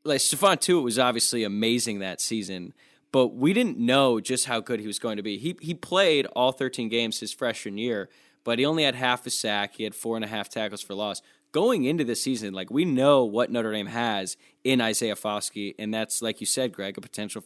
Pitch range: 110-130 Hz